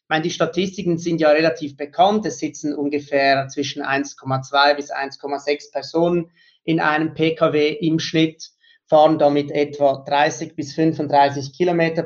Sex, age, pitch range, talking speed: male, 30-49, 145-170 Hz, 140 wpm